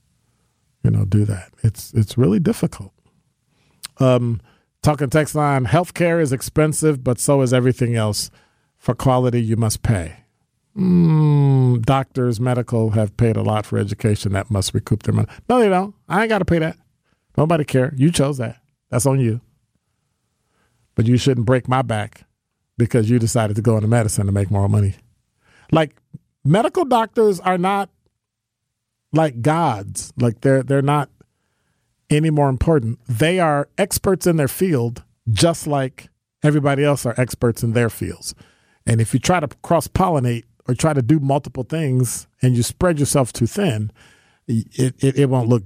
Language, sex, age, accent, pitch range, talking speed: English, male, 40-59, American, 115-155 Hz, 165 wpm